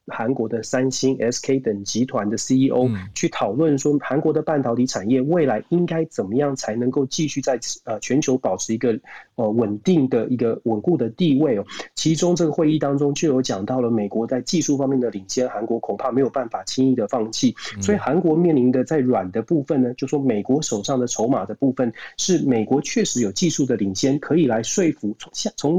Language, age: Chinese, 30-49